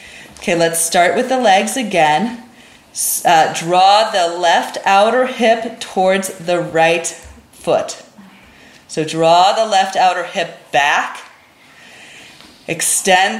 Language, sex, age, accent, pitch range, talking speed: English, female, 30-49, American, 170-210 Hz, 110 wpm